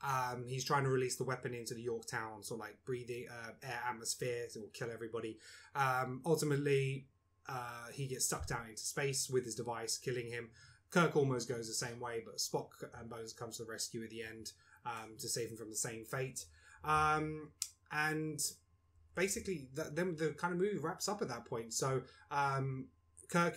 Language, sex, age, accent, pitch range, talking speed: English, male, 20-39, British, 115-135 Hz, 200 wpm